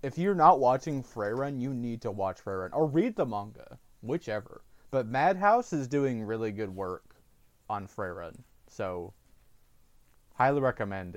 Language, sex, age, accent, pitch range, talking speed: English, male, 20-39, American, 100-130 Hz, 145 wpm